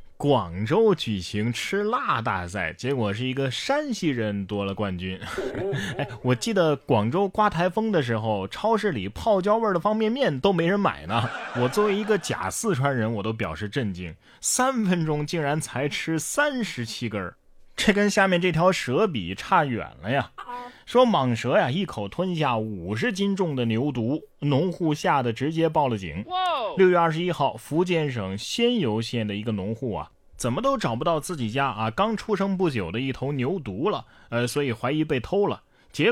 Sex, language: male, Chinese